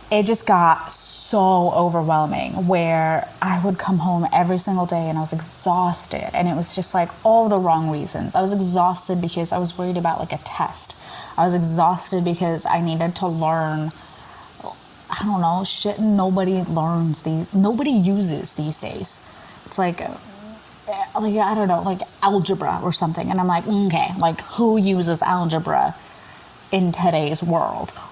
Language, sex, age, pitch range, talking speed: English, female, 20-39, 160-195 Hz, 165 wpm